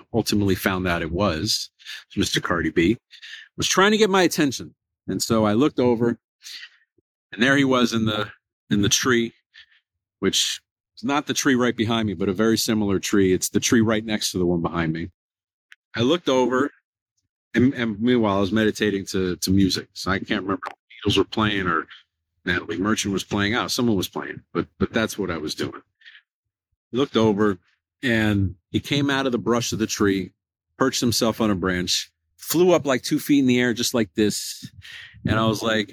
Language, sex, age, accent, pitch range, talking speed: English, male, 50-69, American, 100-130 Hz, 200 wpm